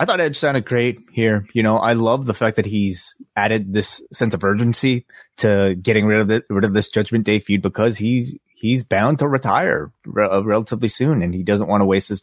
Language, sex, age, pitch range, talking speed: English, male, 20-39, 95-110 Hz, 220 wpm